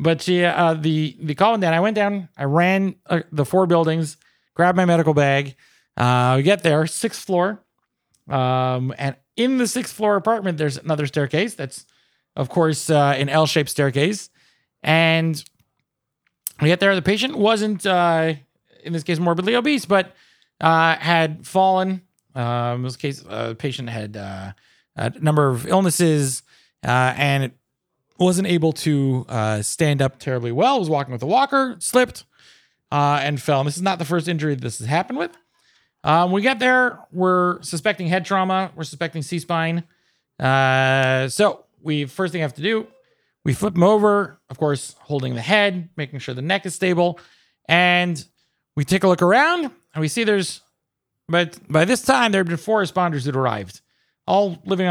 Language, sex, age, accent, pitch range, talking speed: English, male, 30-49, American, 140-190 Hz, 175 wpm